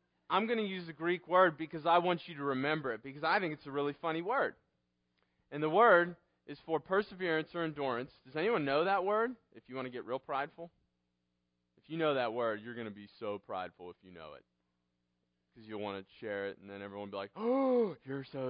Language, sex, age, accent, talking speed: English, male, 30-49, American, 235 wpm